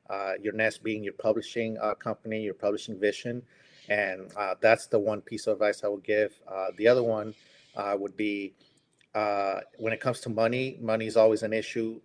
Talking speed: 200 wpm